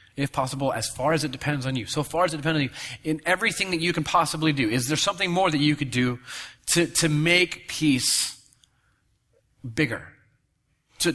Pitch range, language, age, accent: 115-160 Hz, English, 30-49, American